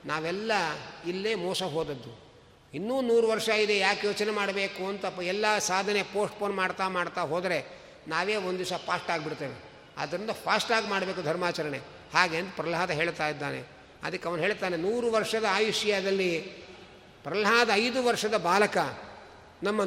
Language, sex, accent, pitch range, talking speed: Kannada, male, native, 185-235 Hz, 130 wpm